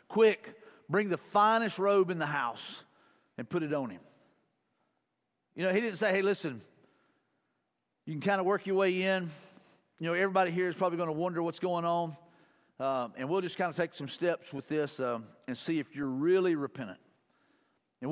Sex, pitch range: male, 165-210 Hz